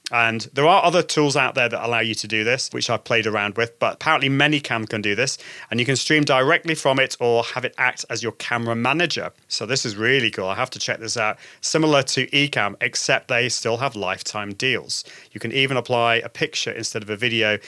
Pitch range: 110-145 Hz